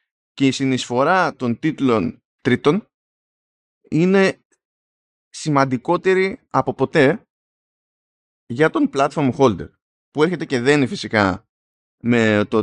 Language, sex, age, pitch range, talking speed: Greek, male, 20-39, 110-150 Hz, 95 wpm